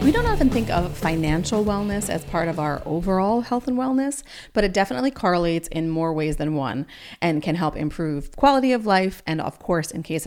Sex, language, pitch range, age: female, English, 155-205 Hz, 30-49